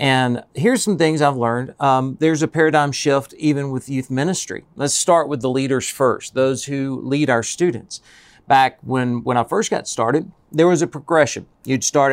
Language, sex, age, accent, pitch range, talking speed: English, male, 50-69, American, 135-170 Hz, 195 wpm